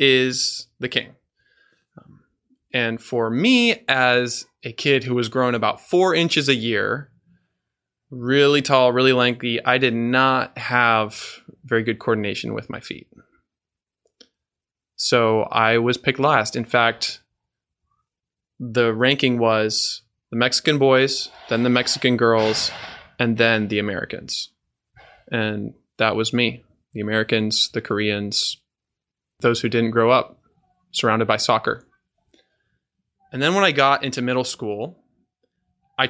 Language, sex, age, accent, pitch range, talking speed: English, male, 20-39, American, 115-145 Hz, 130 wpm